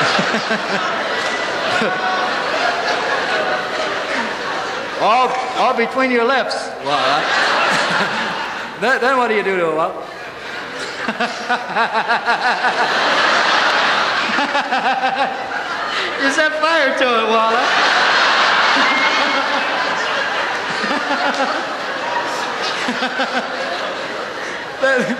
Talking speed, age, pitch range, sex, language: 50 wpm, 50-69, 210-265 Hz, male, English